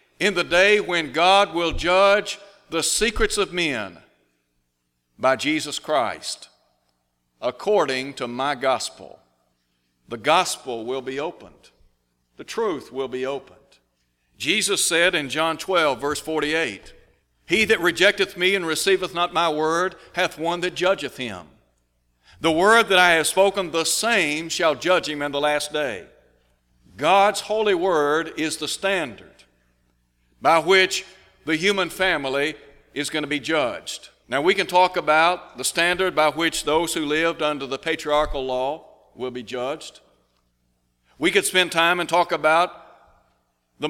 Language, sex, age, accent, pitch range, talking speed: English, male, 60-79, American, 125-175 Hz, 145 wpm